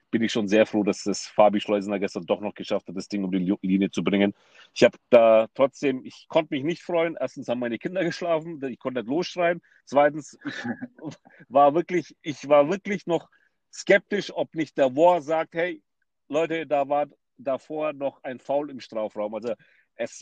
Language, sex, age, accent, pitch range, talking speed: German, male, 40-59, German, 115-160 Hz, 195 wpm